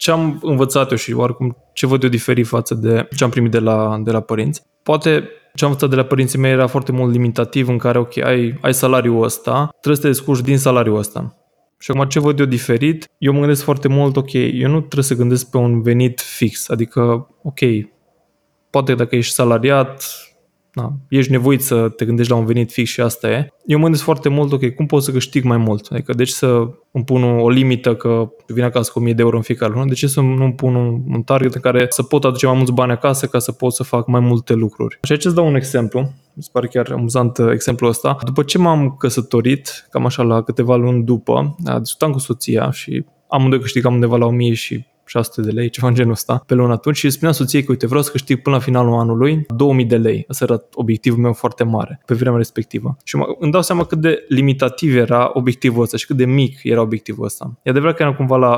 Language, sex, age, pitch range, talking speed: Romanian, male, 20-39, 120-140 Hz, 235 wpm